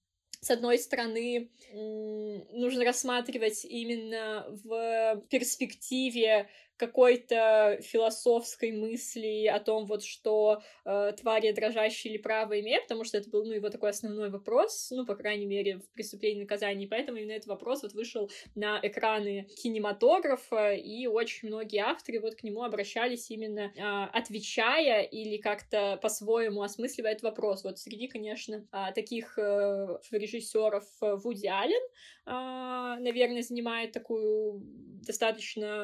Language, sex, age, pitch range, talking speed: English, female, 20-39, 210-235 Hz, 130 wpm